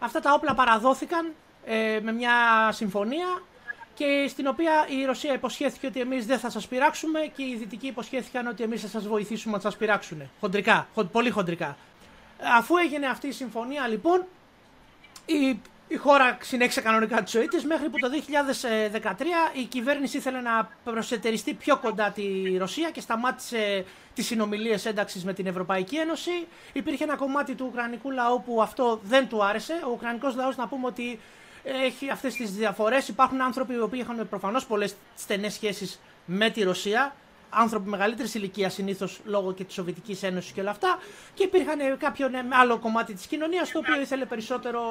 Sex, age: male, 30-49